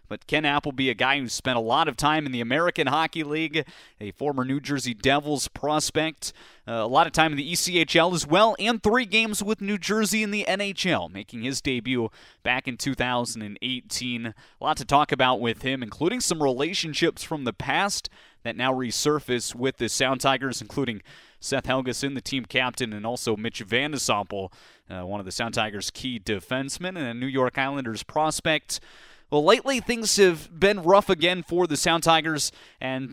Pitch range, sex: 120-155 Hz, male